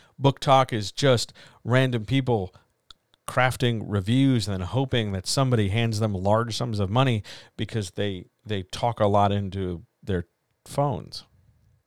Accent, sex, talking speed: American, male, 140 wpm